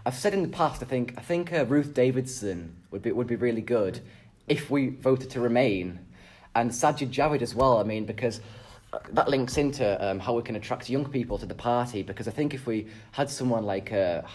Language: English